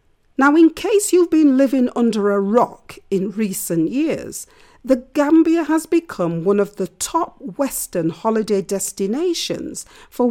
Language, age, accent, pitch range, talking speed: English, 40-59, British, 200-320 Hz, 140 wpm